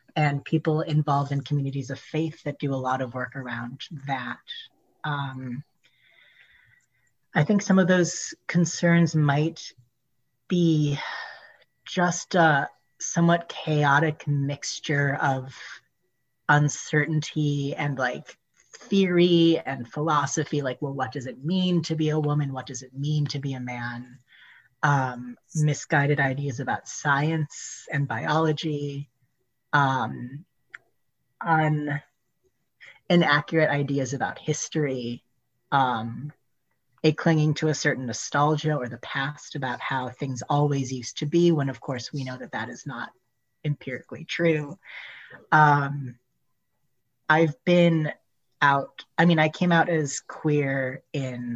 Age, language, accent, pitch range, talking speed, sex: 30-49, English, American, 130-155 Hz, 125 wpm, female